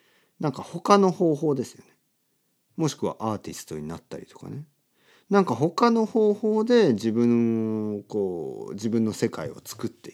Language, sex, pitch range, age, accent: Japanese, male, 100-160 Hz, 50-69, native